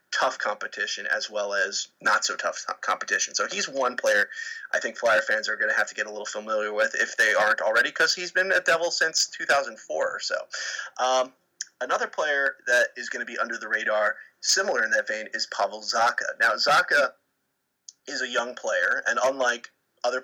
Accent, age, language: American, 30-49, English